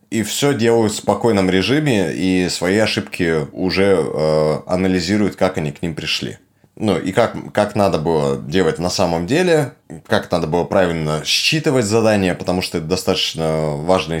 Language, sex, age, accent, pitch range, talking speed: Russian, male, 20-39, native, 85-105 Hz, 160 wpm